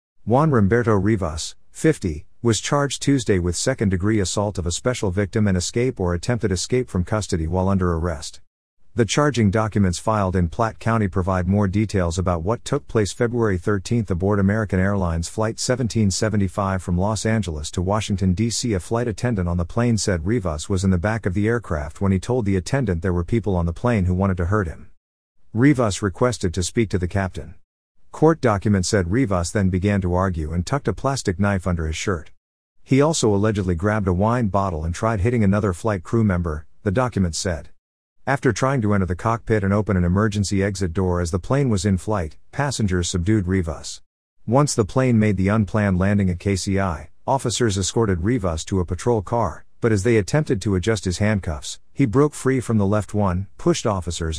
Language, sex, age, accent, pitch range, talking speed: English, male, 50-69, American, 90-115 Hz, 195 wpm